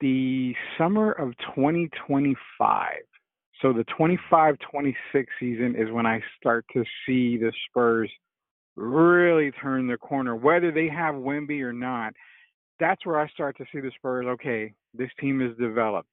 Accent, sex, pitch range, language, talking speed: American, male, 125-155 Hz, English, 140 wpm